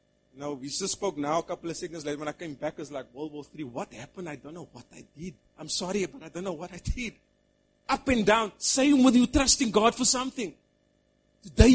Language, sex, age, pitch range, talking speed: English, male, 30-49, 165-260 Hz, 245 wpm